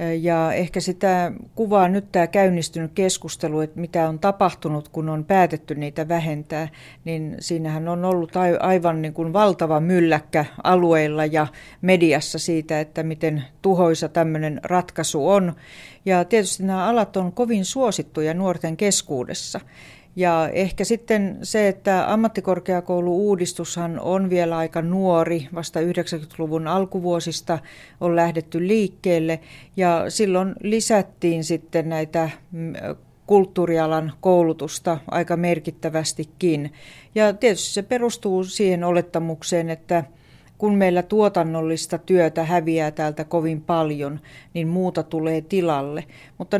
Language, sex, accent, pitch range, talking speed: Finnish, female, native, 160-185 Hz, 115 wpm